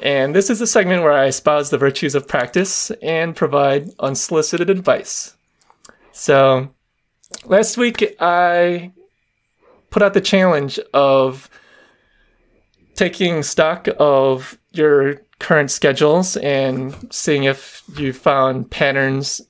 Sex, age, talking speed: male, 20-39, 115 wpm